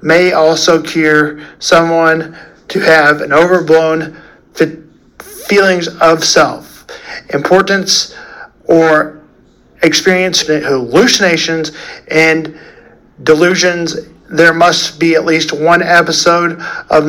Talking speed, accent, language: 90 wpm, American, English